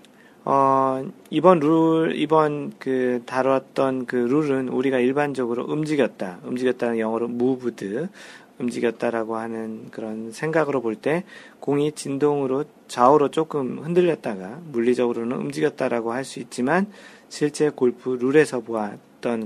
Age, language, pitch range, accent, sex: 40-59, Korean, 115-150 Hz, native, male